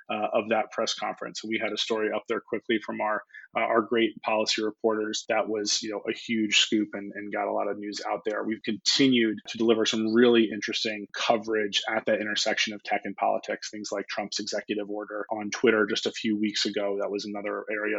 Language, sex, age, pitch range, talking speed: English, male, 30-49, 110-120 Hz, 220 wpm